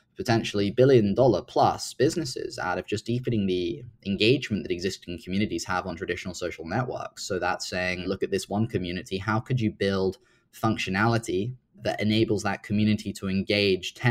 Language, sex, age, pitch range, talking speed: English, male, 20-39, 100-125 Hz, 160 wpm